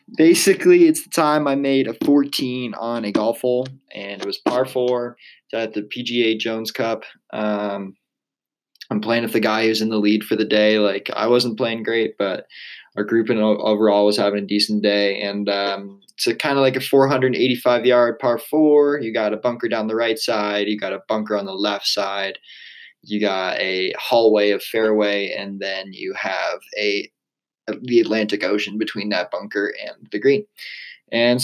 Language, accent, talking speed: English, American, 185 wpm